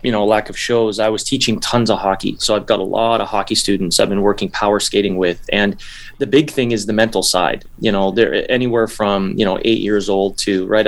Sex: male